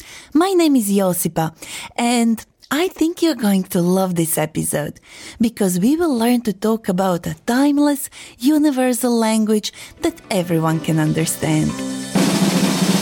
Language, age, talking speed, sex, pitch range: Amharic, 30-49, 130 wpm, female, 170-255 Hz